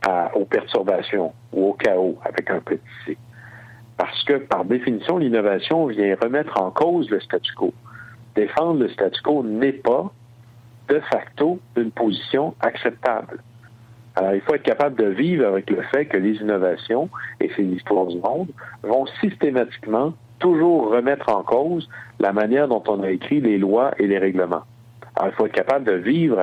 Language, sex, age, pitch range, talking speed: French, male, 60-79, 100-120 Hz, 170 wpm